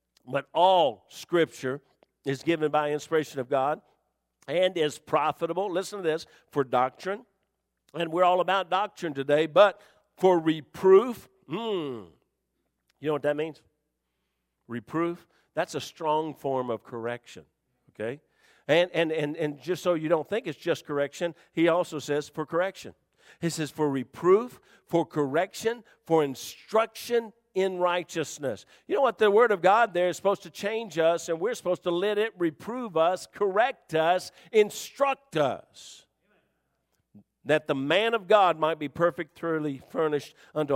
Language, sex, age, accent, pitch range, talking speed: English, male, 50-69, American, 155-200 Hz, 150 wpm